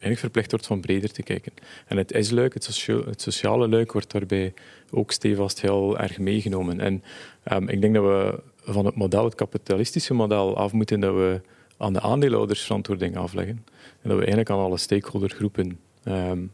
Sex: male